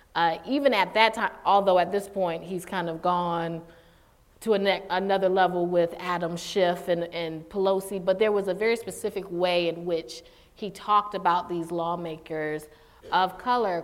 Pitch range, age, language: 175-220 Hz, 30-49, English